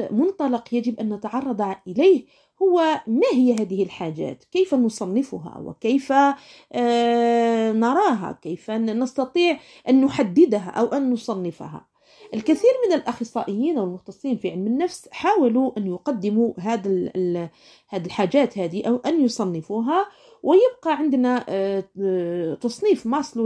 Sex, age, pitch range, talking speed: female, 40-59, 215-290 Hz, 105 wpm